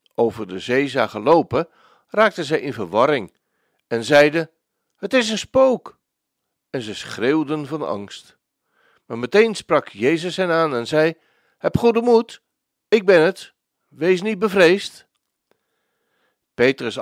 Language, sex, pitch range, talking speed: Dutch, male, 130-195 Hz, 135 wpm